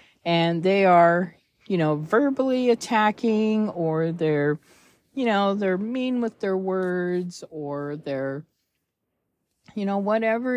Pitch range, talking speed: 170-215 Hz, 120 wpm